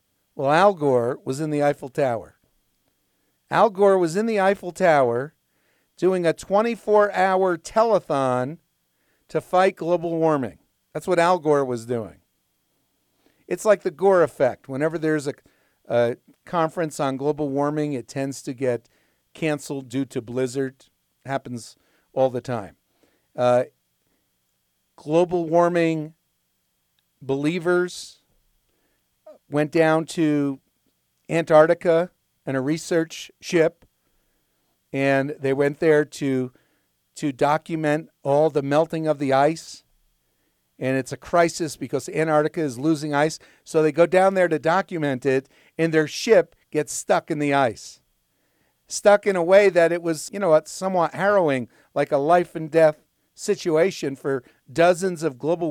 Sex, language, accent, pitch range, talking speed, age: male, English, American, 130-170 Hz, 135 wpm, 50-69